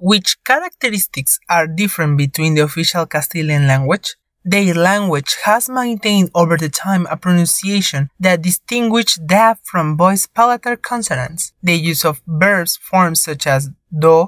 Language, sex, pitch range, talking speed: English, male, 155-205 Hz, 140 wpm